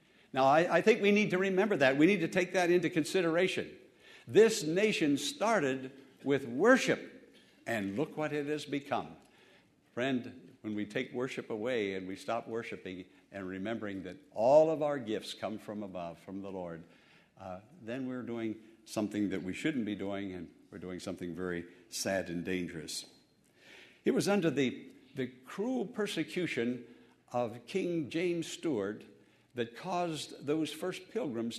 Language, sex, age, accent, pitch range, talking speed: English, male, 60-79, American, 115-170 Hz, 160 wpm